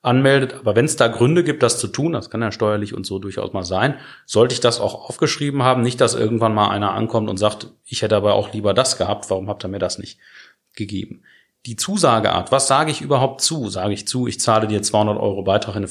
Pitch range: 100-130 Hz